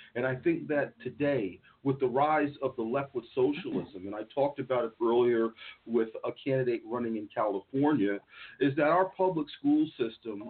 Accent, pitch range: American, 120-150 Hz